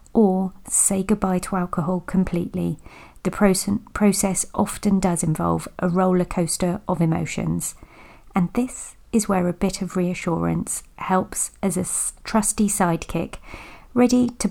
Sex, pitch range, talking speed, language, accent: female, 175-210 Hz, 130 wpm, English, British